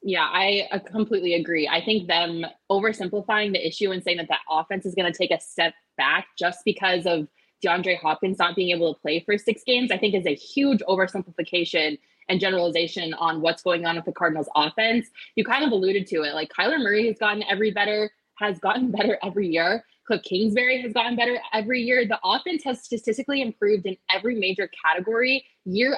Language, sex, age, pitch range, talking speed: English, female, 20-39, 175-220 Hz, 200 wpm